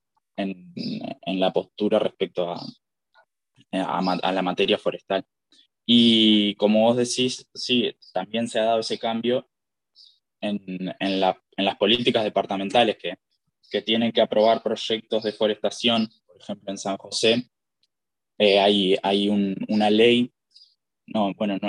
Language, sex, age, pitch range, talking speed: Spanish, male, 10-29, 95-115 Hz, 125 wpm